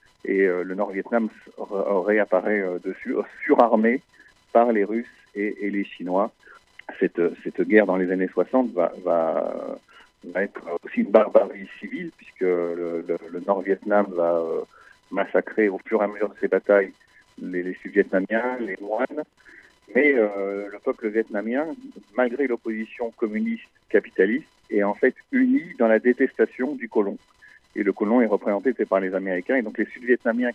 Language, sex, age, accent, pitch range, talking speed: French, male, 50-69, French, 95-115 Hz, 145 wpm